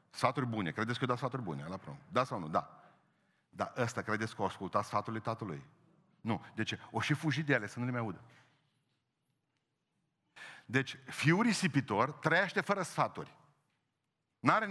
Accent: native